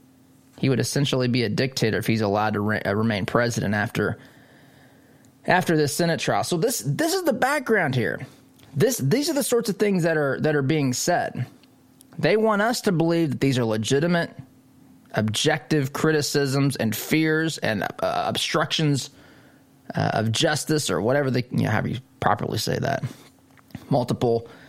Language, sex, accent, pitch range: English, male, American, 120-155 Hz